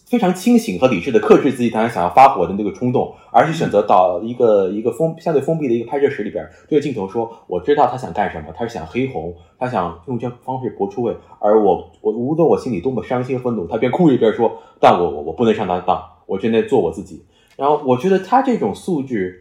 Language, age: Chinese, 20-39